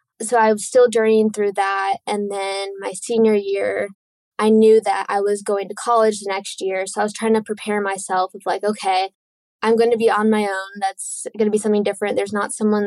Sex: female